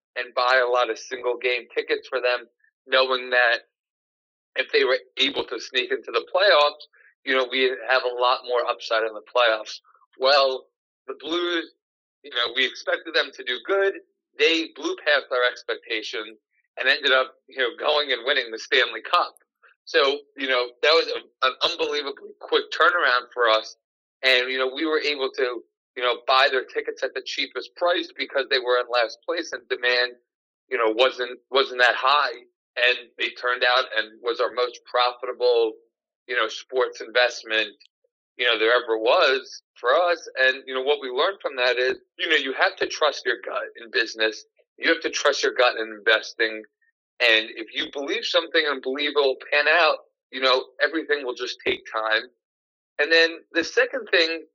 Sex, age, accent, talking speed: male, 40-59, American, 185 wpm